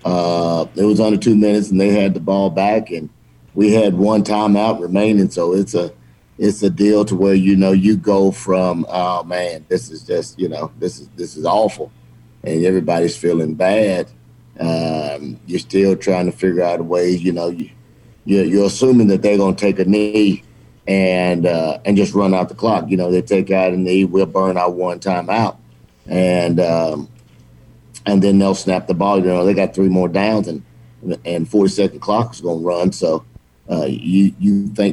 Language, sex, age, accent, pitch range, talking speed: English, male, 50-69, American, 90-100 Hz, 205 wpm